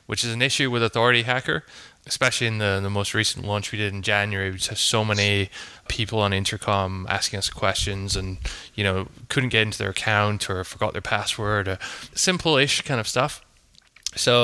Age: 20-39